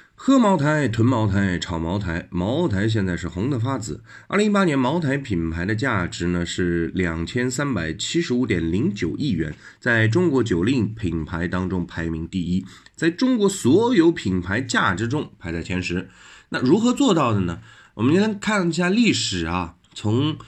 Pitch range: 90-135 Hz